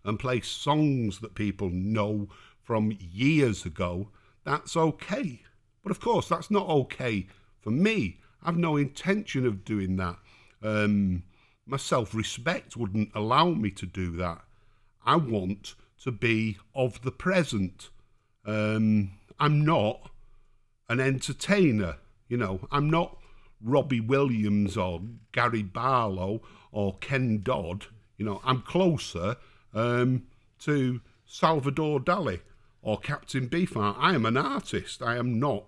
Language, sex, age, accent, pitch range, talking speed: English, male, 50-69, British, 105-135 Hz, 130 wpm